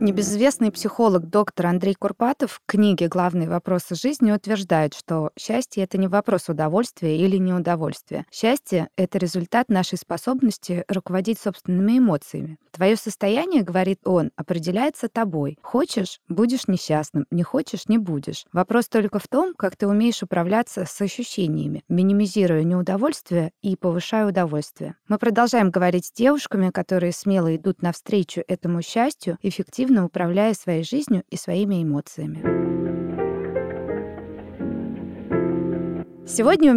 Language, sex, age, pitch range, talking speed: Russian, female, 20-39, 175-225 Hz, 120 wpm